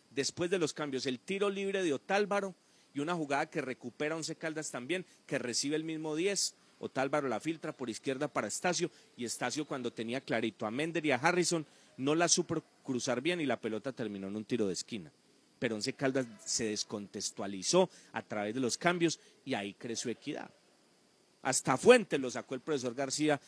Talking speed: 190 wpm